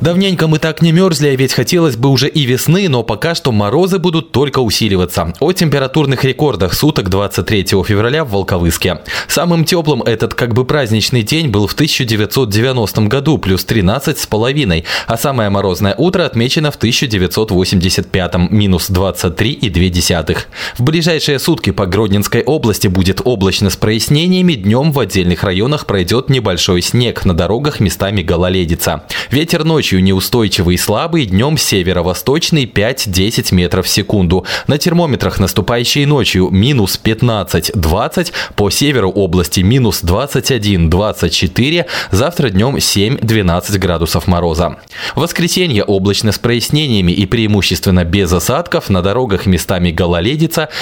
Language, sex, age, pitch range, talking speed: Russian, male, 20-39, 95-140 Hz, 130 wpm